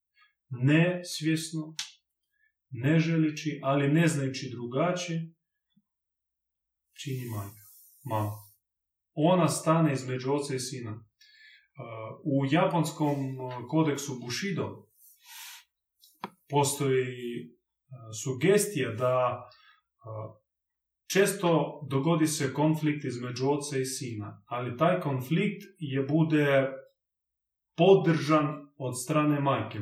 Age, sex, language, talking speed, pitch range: 30-49, male, Croatian, 85 wpm, 125-165 Hz